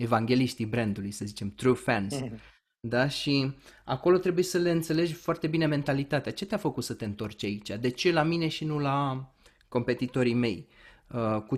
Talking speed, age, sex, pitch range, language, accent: 170 wpm, 20-39, male, 115-160 Hz, Romanian, native